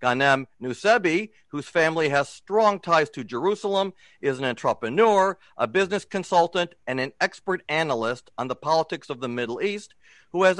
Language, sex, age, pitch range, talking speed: English, male, 50-69, 140-185 Hz, 160 wpm